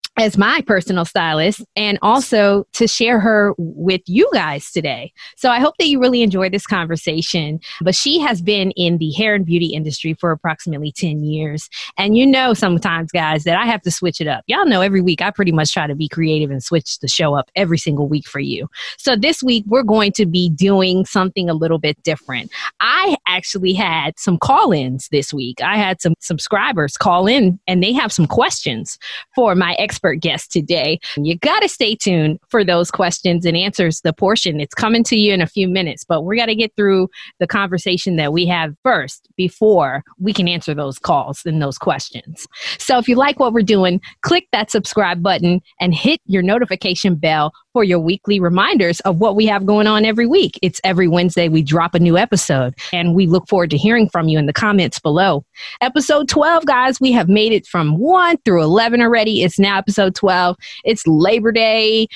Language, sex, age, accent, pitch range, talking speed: English, female, 20-39, American, 165-220 Hz, 205 wpm